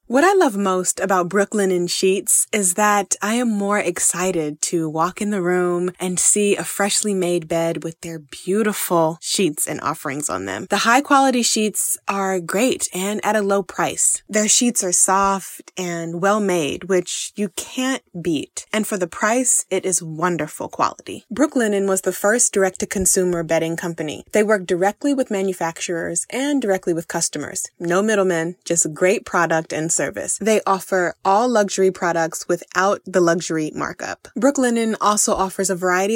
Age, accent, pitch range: 20-39, American, 175-210 Hz